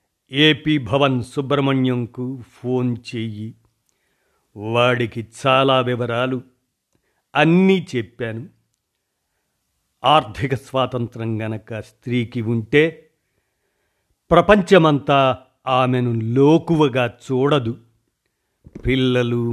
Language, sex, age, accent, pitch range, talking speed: Telugu, male, 50-69, native, 115-140 Hz, 60 wpm